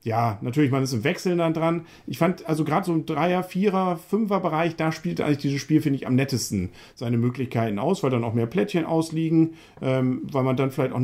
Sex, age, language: male, 50-69, German